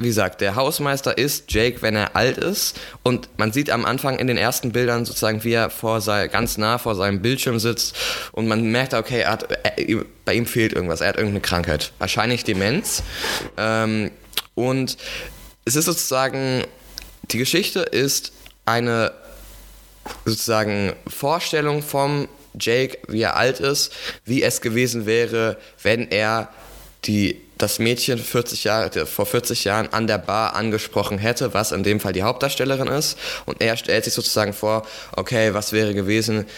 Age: 20-39